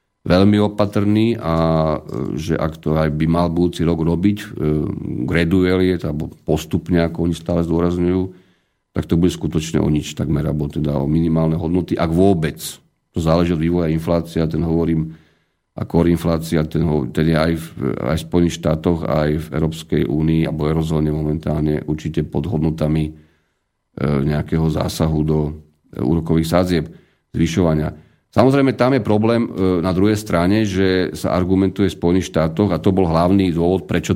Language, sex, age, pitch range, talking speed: Slovak, male, 40-59, 80-95 Hz, 155 wpm